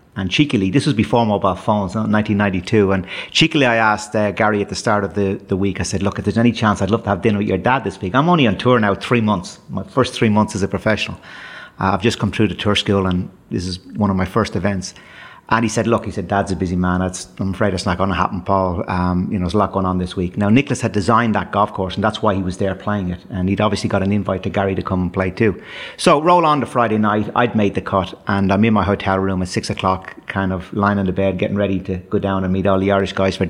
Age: 30-49